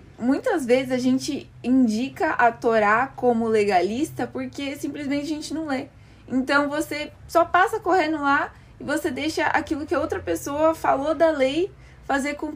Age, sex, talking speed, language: 20-39, female, 165 wpm, Portuguese